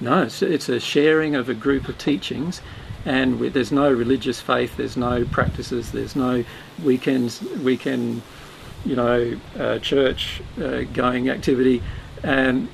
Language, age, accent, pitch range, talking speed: English, 50-69, Australian, 125-140 Hz, 130 wpm